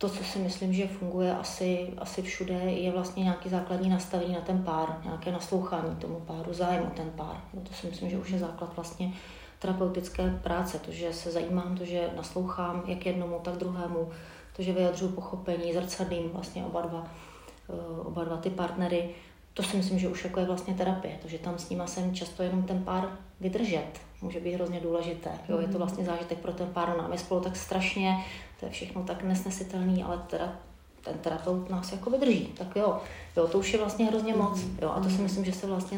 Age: 30-49